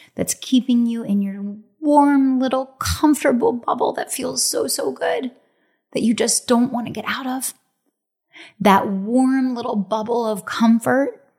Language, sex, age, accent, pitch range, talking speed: English, female, 30-49, American, 195-250 Hz, 155 wpm